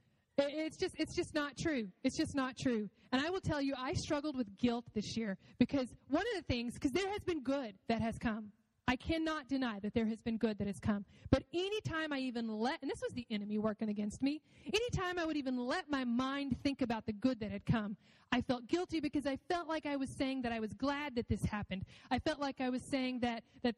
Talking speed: 250 wpm